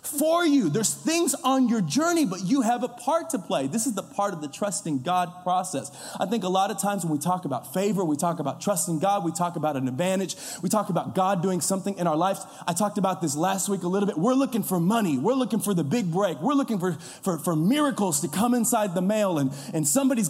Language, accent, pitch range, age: English, American, 190-265 Hz, 30-49